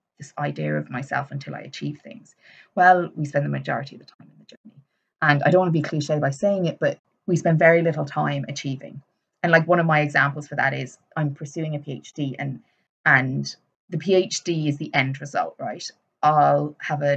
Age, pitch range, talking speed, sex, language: 20-39, 140-165 Hz, 215 wpm, female, English